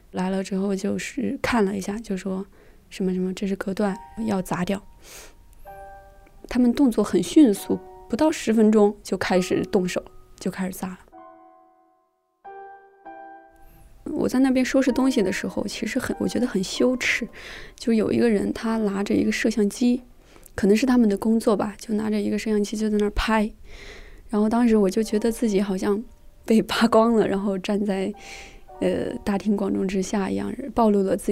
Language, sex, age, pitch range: Chinese, female, 20-39, 195-240 Hz